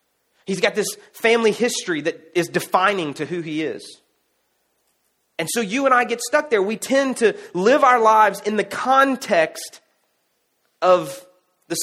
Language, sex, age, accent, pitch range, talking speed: English, male, 30-49, American, 155-210 Hz, 155 wpm